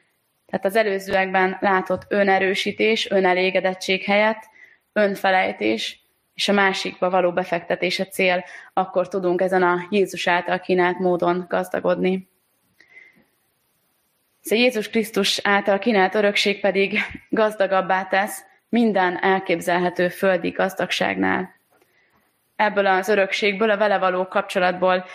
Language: Hungarian